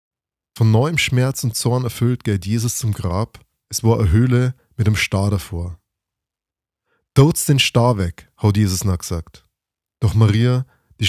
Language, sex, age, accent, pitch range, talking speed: German, male, 20-39, German, 100-130 Hz, 155 wpm